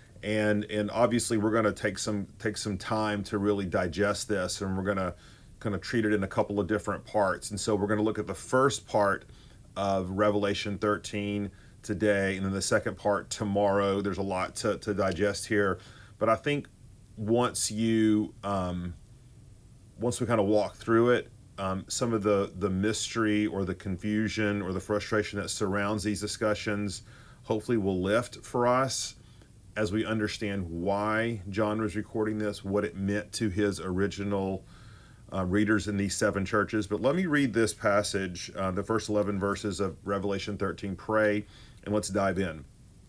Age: 40-59